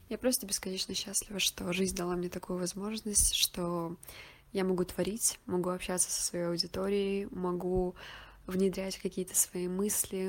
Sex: female